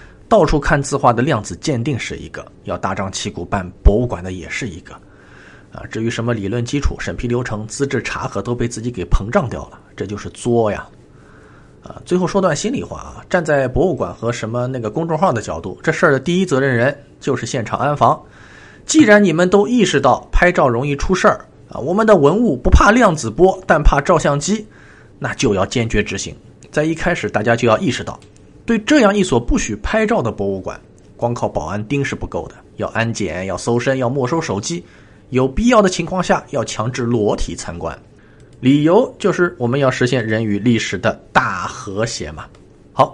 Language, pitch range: Chinese, 105-165 Hz